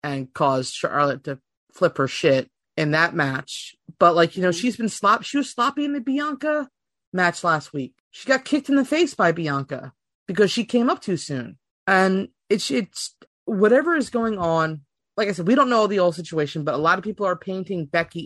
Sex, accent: female, American